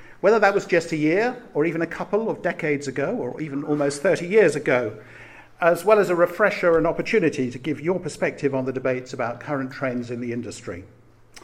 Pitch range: 130-175 Hz